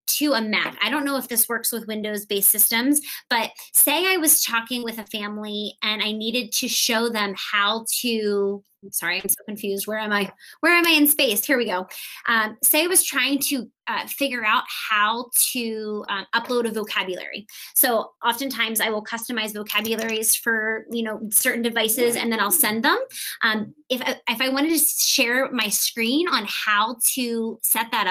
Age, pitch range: 20-39, 215-260 Hz